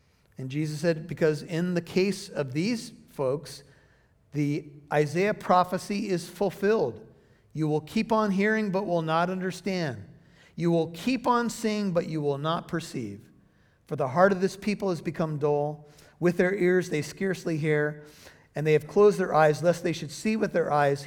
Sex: male